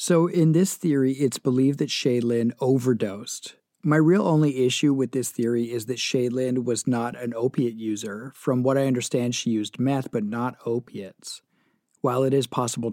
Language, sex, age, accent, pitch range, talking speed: English, male, 40-59, American, 115-135 Hz, 175 wpm